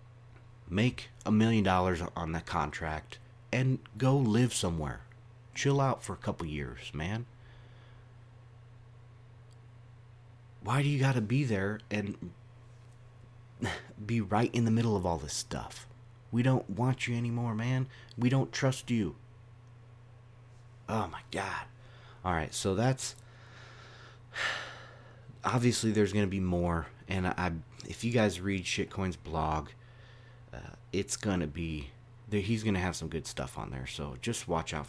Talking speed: 145 wpm